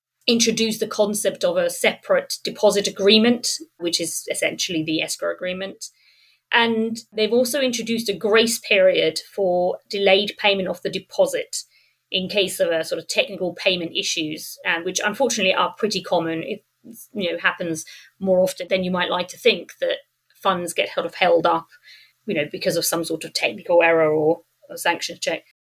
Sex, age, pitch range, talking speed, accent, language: female, 30-49, 175-230 Hz, 170 wpm, British, English